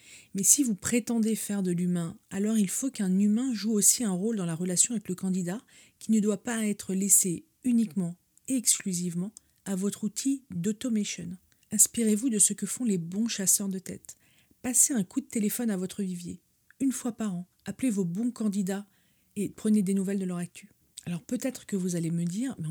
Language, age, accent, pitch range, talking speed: French, 40-59, French, 190-230 Hz, 200 wpm